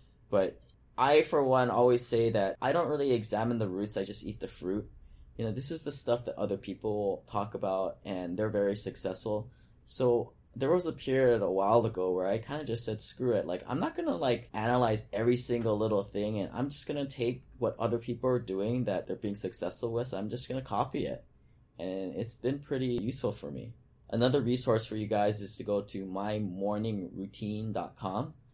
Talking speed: 210 wpm